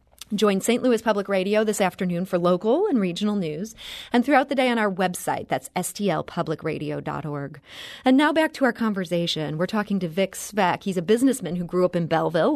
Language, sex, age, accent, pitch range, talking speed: English, female, 30-49, American, 170-230 Hz, 190 wpm